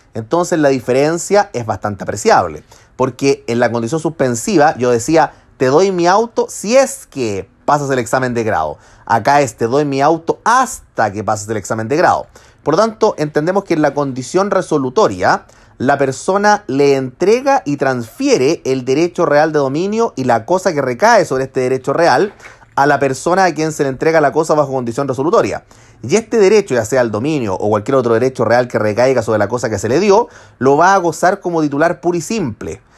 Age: 30-49